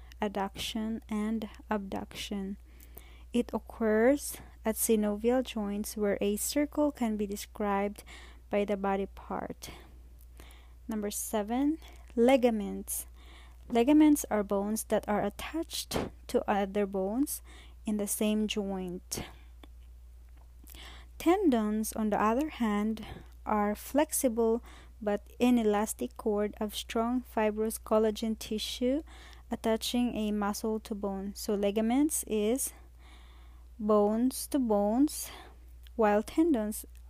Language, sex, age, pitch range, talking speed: English, female, 20-39, 195-230 Hz, 100 wpm